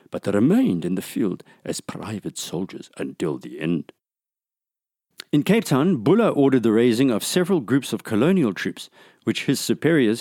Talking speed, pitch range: 165 wpm, 105-145 Hz